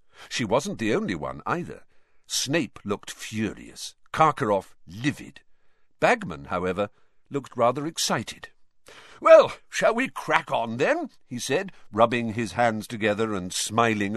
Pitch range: 100-160 Hz